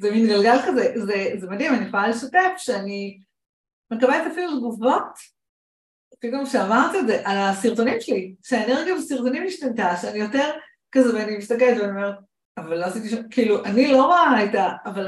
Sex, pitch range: female, 200-260 Hz